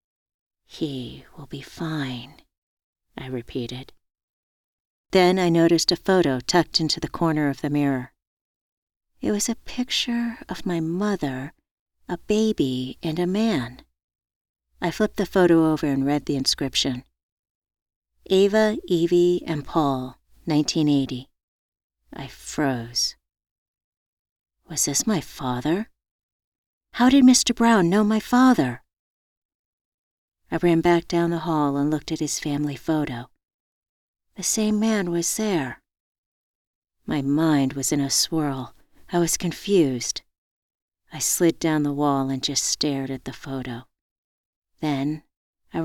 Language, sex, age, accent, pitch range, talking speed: English, female, 50-69, American, 135-175 Hz, 125 wpm